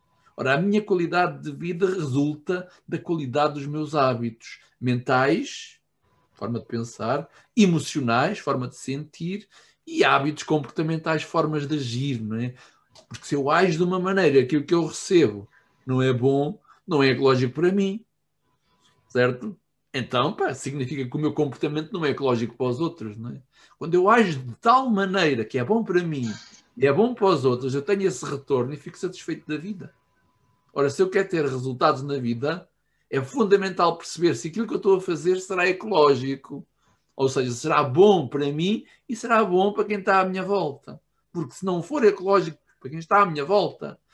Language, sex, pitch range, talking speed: Portuguese, male, 135-185 Hz, 180 wpm